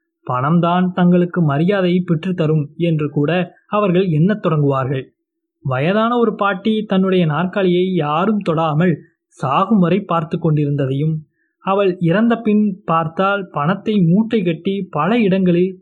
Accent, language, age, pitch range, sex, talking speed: native, Tamil, 20-39, 160-200 Hz, male, 100 wpm